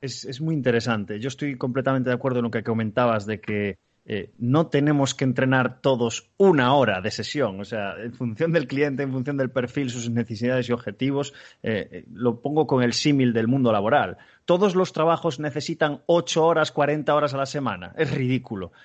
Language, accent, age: Spanish, Spanish, 30-49